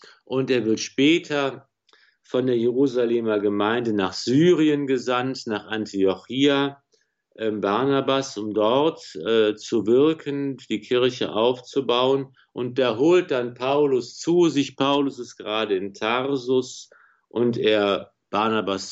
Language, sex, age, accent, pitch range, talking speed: German, male, 50-69, German, 110-135 Hz, 120 wpm